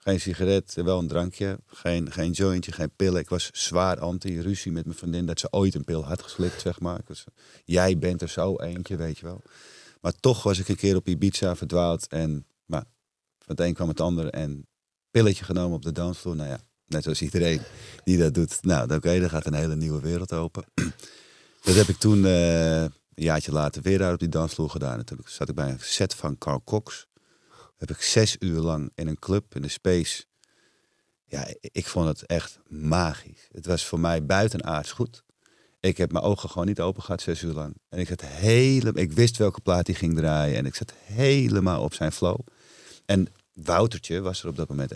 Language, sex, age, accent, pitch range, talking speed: Dutch, male, 40-59, Dutch, 80-95 Hz, 210 wpm